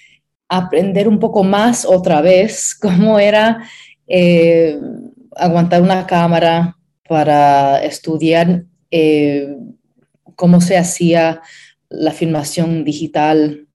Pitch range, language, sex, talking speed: 160-190 Hz, Spanish, female, 90 wpm